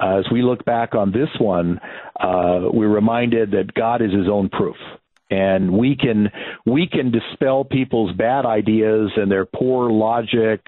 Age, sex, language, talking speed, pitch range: 50-69, male, English, 165 wpm, 100-115 Hz